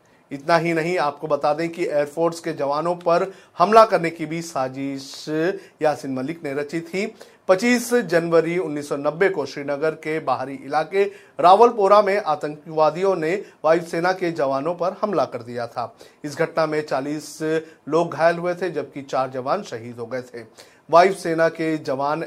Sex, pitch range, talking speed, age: male, 140-170 Hz, 160 wpm, 40-59